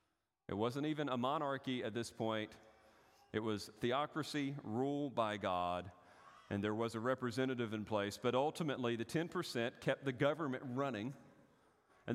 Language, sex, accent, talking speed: English, male, American, 150 wpm